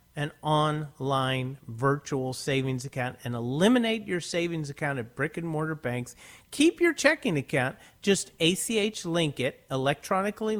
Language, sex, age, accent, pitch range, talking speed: English, male, 40-59, American, 135-190 Hz, 135 wpm